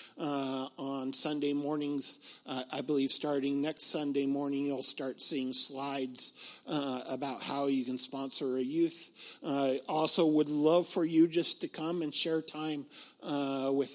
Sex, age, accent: male, 50-69, American